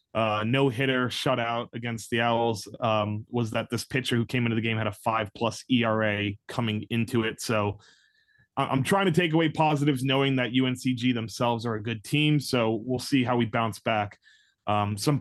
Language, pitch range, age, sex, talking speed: English, 110-135 Hz, 20-39, male, 195 wpm